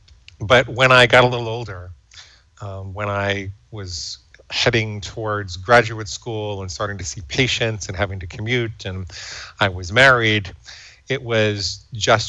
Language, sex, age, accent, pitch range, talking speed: English, male, 40-59, American, 100-115 Hz, 150 wpm